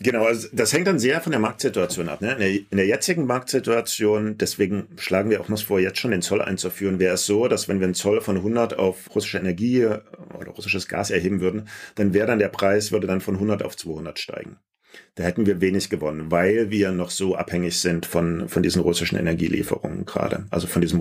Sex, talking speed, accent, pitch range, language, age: male, 215 wpm, German, 85-100 Hz, German, 40-59